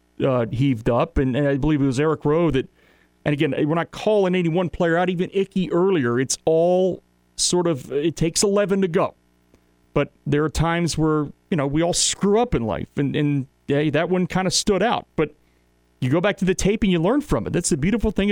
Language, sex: English, male